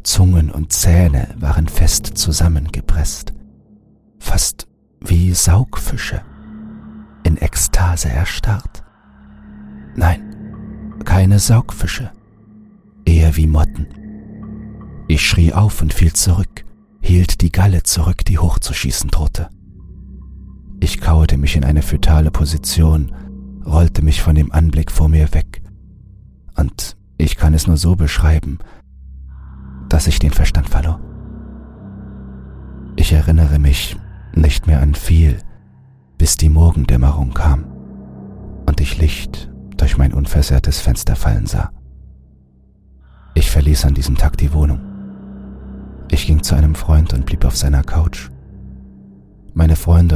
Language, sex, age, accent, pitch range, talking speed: German, male, 40-59, German, 70-90 Hz, 115 wpm